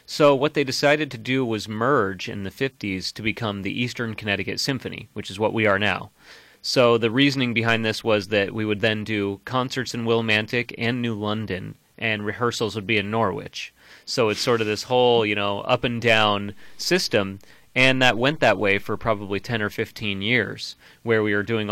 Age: 30-49